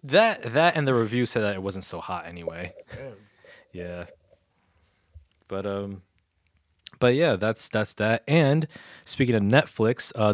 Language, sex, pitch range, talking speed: English, male, 95-115 Hz, 145 wpm